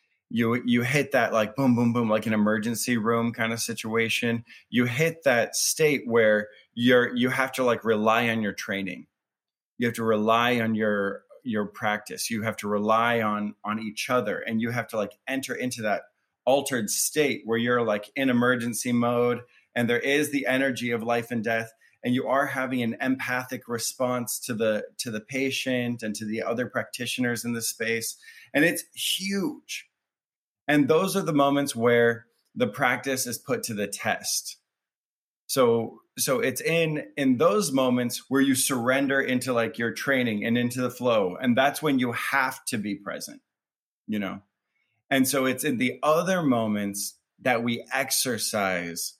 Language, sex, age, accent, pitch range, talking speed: English, male, 30-49, American, 110-130 Hz, 175 wpm